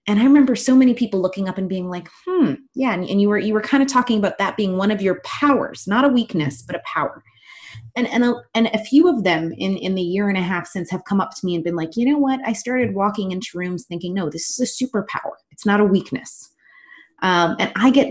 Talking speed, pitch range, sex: 270 wpm, 170-230 Hz, female